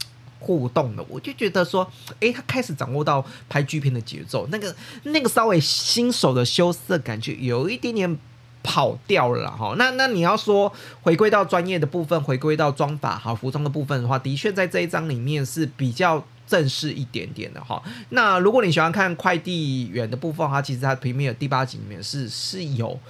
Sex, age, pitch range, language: male, 30-49, 125-165 Hz, Chinese